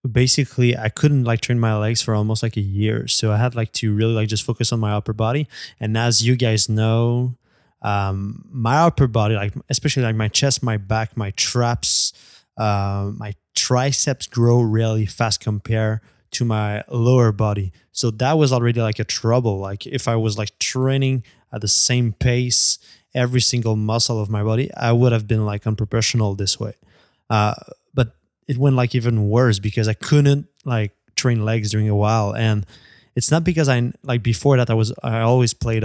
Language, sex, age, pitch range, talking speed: English, male, 20-39, 110-125 Hz, 190 wpm